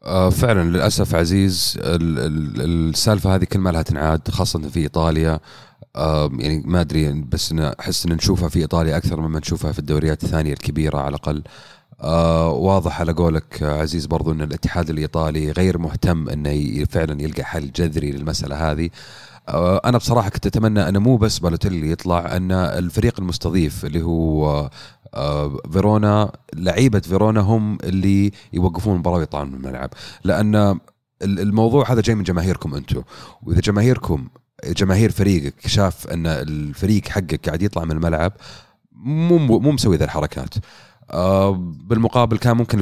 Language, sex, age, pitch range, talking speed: Arabic, male, 30-49, 80-100 Hz, 140 wpm